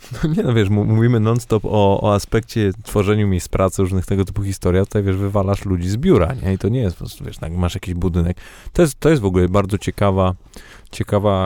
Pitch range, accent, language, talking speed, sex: 95-110 Hz, native, Polish, 205 wpm, male